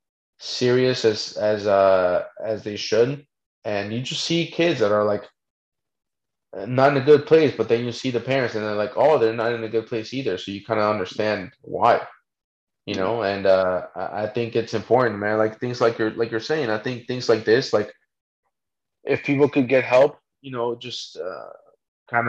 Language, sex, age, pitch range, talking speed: English, male, 20-39, 105-125 Hz, 200 wpm